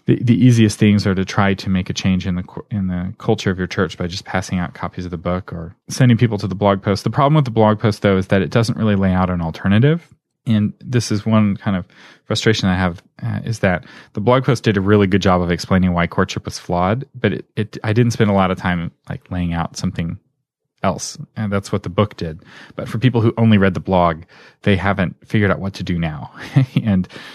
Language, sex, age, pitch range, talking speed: English, male, 30-49, 90-115 Hz, 250 wpm